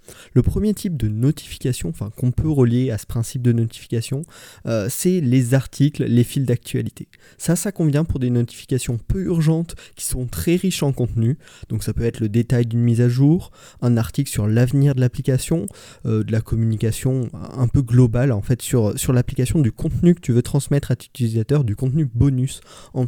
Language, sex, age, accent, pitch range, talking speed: French, male, 20-39, French, 115-140 Hz, 190 wpm